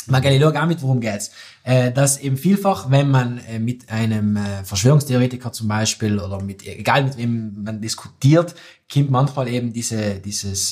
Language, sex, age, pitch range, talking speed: German, male, 20-39, 105-135 Hz, 185 wpm